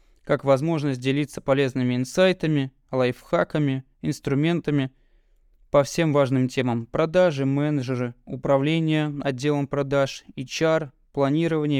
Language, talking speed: Russian, 95 wpm